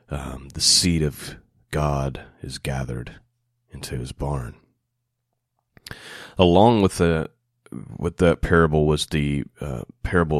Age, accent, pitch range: 30-49, American, 75-105 Hz